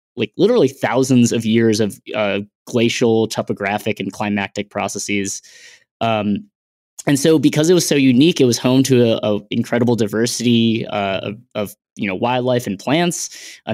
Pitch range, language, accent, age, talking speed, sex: 105-130 Hz, English, American, 10-29, 160 wpm, male